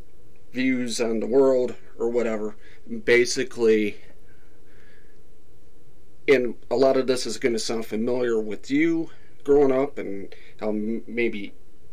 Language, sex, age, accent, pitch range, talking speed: English, male, 40-59, American, 105-135 Hz, 125 wpm